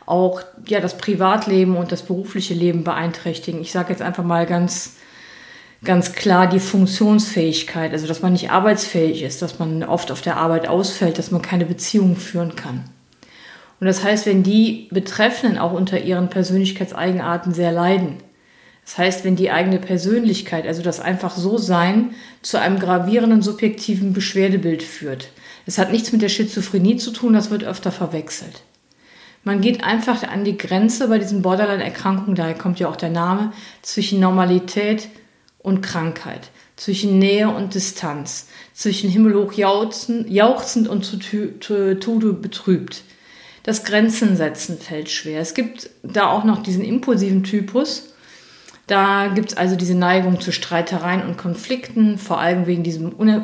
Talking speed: 150 wpm